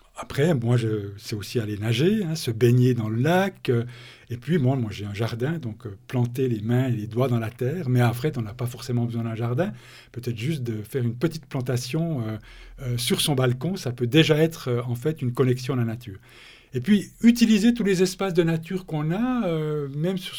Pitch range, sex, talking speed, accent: 120-155 Hz, male, 225 wpm, French